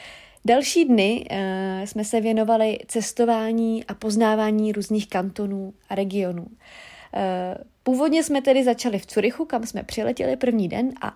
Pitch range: 205-235 Hz